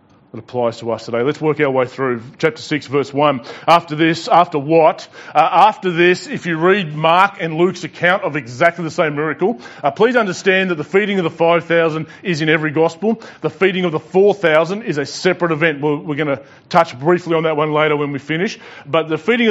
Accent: Australian